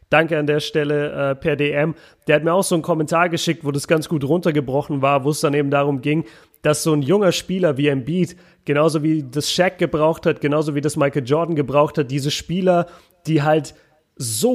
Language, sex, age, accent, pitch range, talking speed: German, male, 30-49, German, 145-170 Hz, 215 wpm